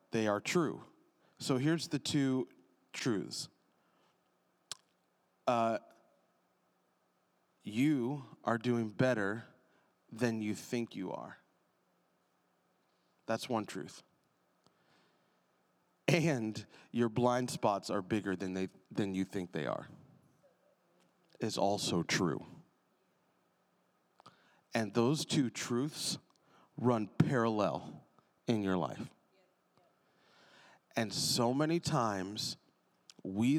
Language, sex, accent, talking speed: English, male, American, 90 wpm